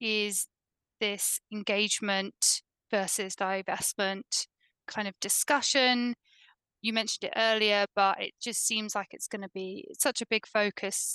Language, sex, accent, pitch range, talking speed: English, female, British, 195-230 Hz, 135 wpm